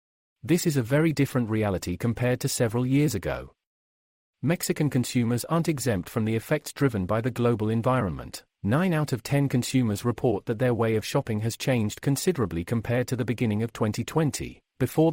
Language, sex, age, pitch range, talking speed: English, male, 40-59, 110-140 Hz, 175 wpm